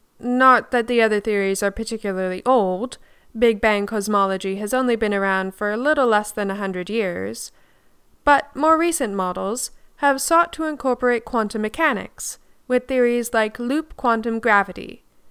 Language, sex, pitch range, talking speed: English, female, 205-250 Hz, 155 wpm